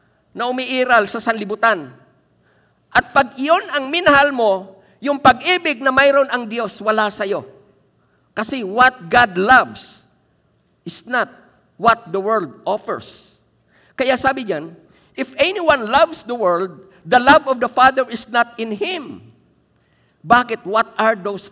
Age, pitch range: 50-69, 190-255 Hz